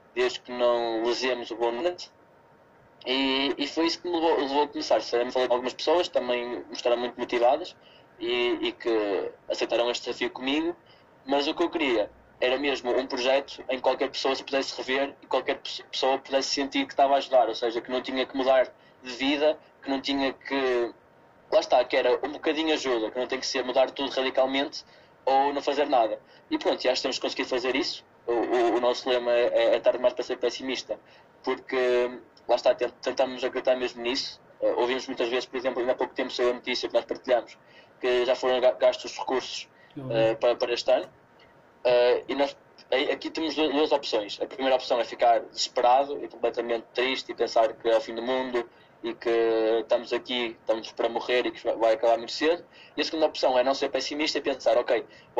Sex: male